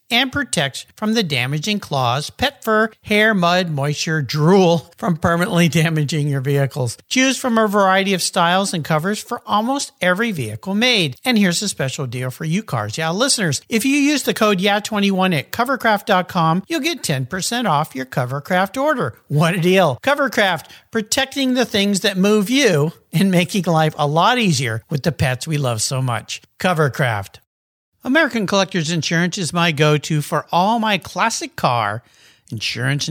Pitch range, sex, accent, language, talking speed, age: 150-220 Hz, male, American, English, 165 wpm, 50-69